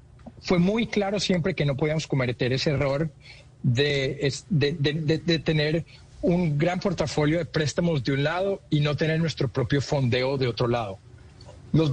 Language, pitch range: Spanish, 140-170 Hz